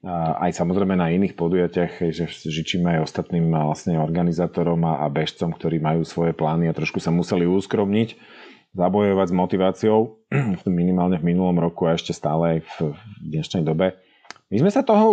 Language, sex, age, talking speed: Slovak, male, 40-59, 160 wpm